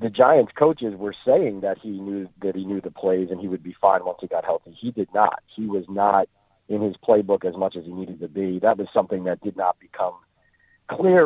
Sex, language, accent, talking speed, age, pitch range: male, English, American, 245 wpm, 40-59, 95-110 Hz